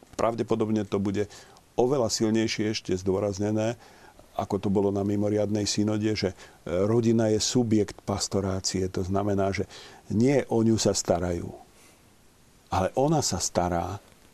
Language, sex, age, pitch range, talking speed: Slovak, male, 50-69, 100-120 Hz, 125 wpm